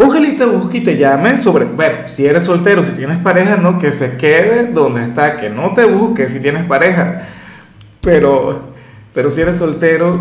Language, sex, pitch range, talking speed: Spanish, male, 135-175 Hz, 195 wpm